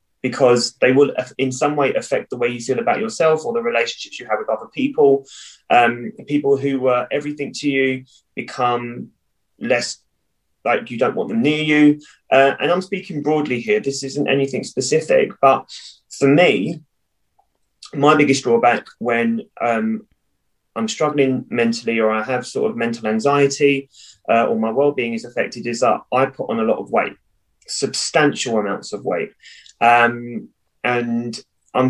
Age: 20-39